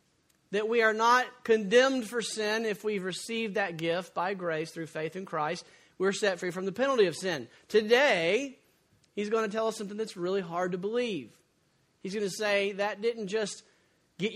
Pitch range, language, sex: 195-250 Hz, English, male